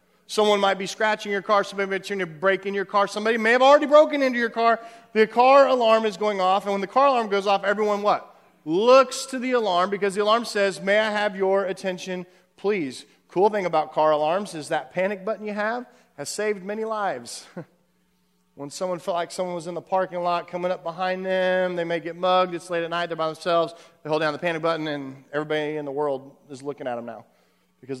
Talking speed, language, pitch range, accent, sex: 230 wpm, English, 170-230 Hz, American, male